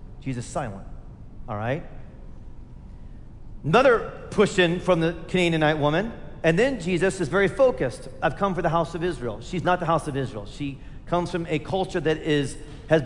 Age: 40-59